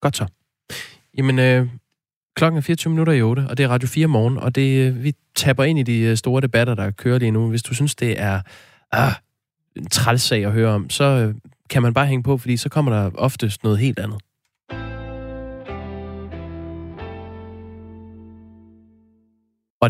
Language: Danish